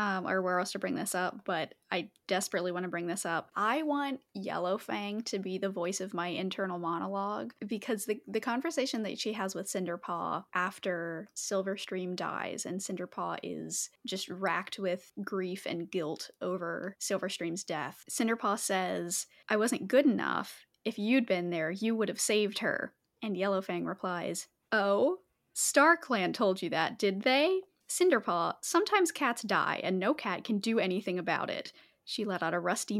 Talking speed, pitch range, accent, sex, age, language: 170 wpm, 185-255 Hz, American, female, 10-29, English